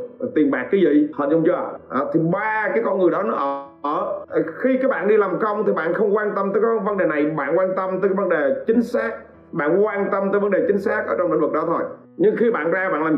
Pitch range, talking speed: 150-230 Hz, 280 wpm